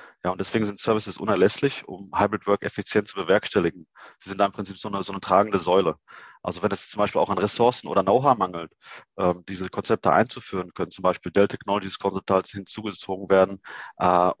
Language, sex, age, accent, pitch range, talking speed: German, male, 40-59, German, 95-110 Hz, 190 wpm